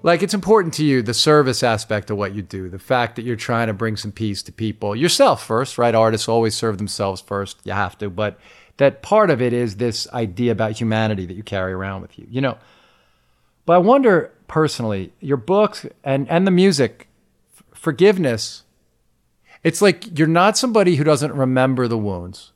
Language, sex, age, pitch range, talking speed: English, male, 50-69, 105-145 Hz, 195 wpm